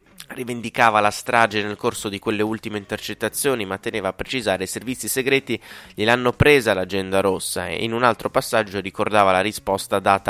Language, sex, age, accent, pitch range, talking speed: Italian, male, 20-39, native, 100-120 Hz, 170 wpm